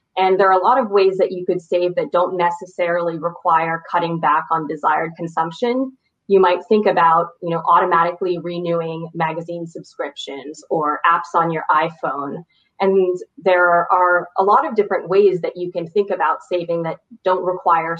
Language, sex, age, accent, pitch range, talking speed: English, female, 20-39, American, 165-190 Hz, 175 wpm